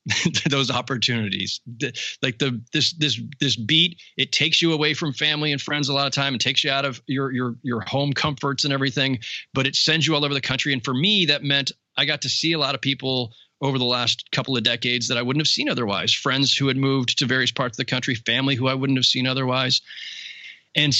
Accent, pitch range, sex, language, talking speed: American, 115-145 Hz, male, English, 235 wpm